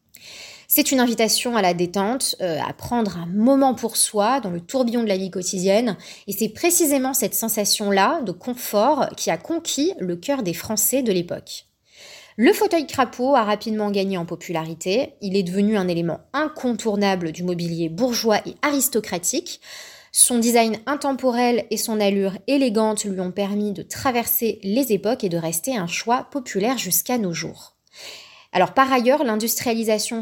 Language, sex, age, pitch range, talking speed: French, female, 20-39, 195-260 Hz, 165 wpm